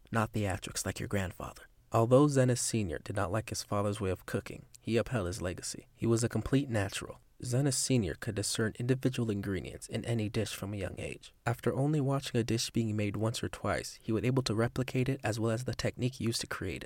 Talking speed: 220 wpm